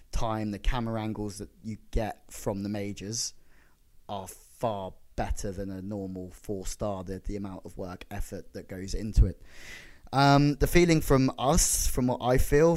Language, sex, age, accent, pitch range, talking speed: English, male, 10-29, British, 100-115 Hz, 175 wpm